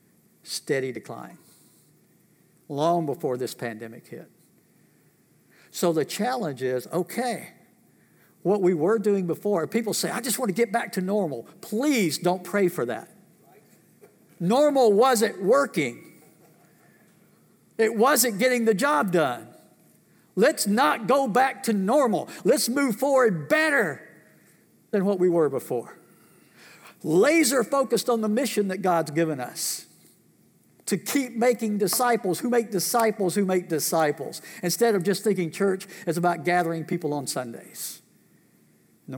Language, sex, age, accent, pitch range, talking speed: English, male, 60-79, American, 150-225 Hz, 135 wpm